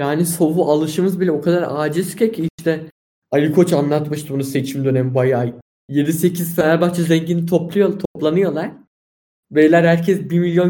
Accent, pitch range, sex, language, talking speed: native, 145-180 Hz, male, Turkish, 135 wpm